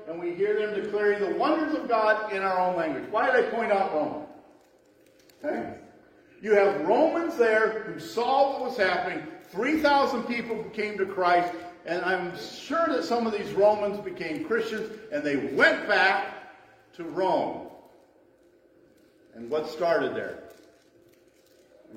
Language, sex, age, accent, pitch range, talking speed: English, male, 50-69, American, 155-220 Hz, 145 wpm